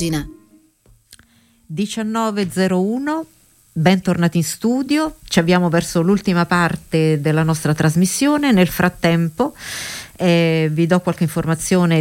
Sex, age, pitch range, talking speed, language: female, 50-69, 160-200 Hz, 95 wpm, Italian